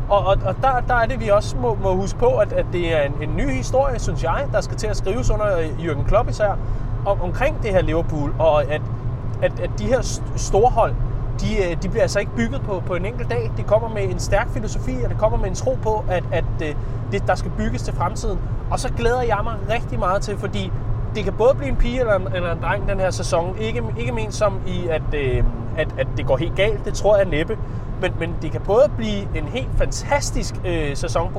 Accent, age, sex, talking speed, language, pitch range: native, 30-49, male, 240 wpm, Danish, 110-130 Hz